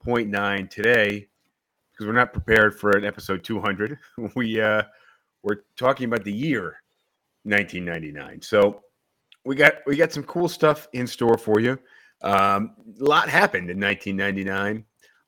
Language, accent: English, American